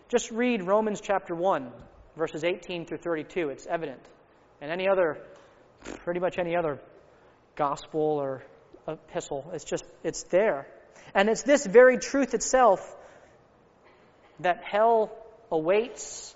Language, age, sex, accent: English, 30-49, male, American